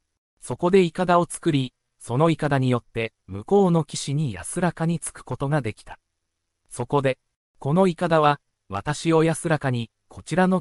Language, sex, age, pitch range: Japanese, male, 40-59, 105-165 Hz